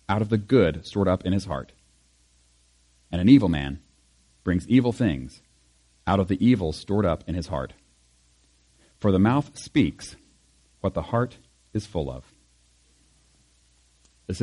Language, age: English, 40-59